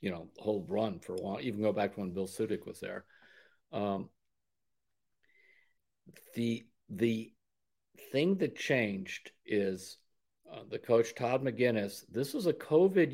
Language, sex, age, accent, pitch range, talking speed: English, male, 50-69, American, 110-130 Hz, 150 wpm